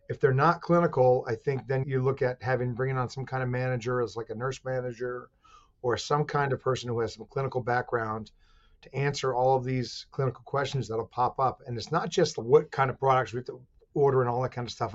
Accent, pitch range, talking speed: American, 120-140 Hz, 240 wpm